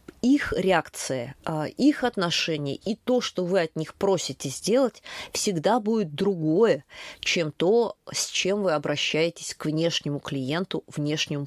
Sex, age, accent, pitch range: female, 20-39, native, 150-210 Hz